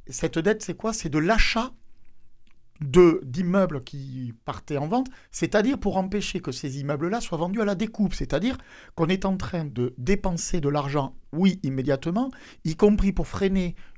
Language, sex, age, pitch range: French, male, 50-69, 140-200 Hz